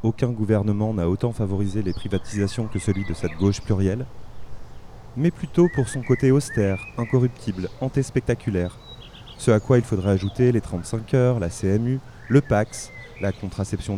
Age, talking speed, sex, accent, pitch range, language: 30-49, 155 wpm, male, French, 95-120 Hz, French